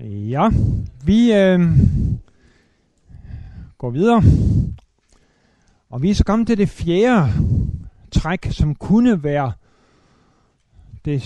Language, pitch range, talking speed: Danish, 110-160 Hz, 95 wpm